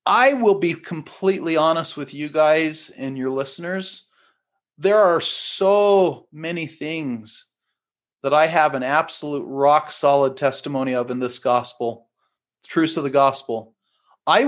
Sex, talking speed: male, 140 wpm